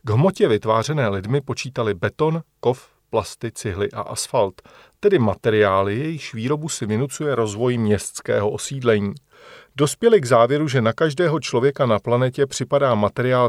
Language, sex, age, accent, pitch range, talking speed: Czech, male, 40-59, native, 110-145 Hz, 140 wpm